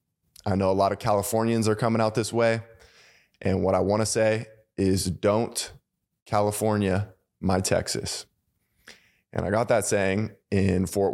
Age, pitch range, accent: 20-39, 95-110 Hz, American